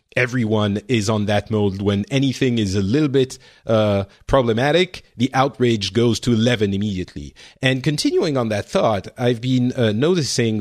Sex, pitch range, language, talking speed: male, 105-135 Hz, English, 160 wpm